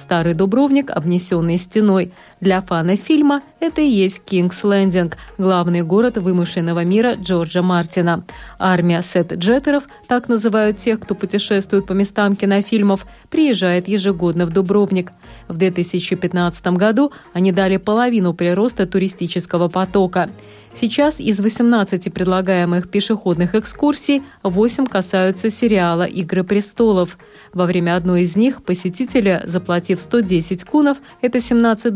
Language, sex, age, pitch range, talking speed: Russian, female, 30-49, 180-225 Hz, 120 wpm